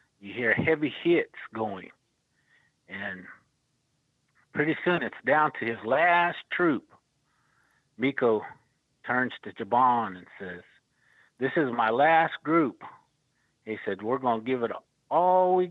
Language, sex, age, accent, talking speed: English, male, 50-69, American, 130 wpm